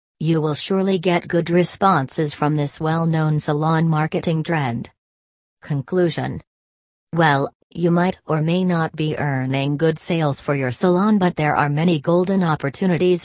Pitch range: 145-175 Hz